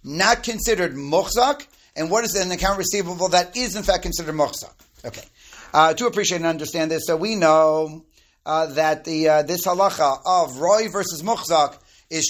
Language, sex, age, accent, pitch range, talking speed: English, male, 40-59, American, 165-210 Hz, 180 wpm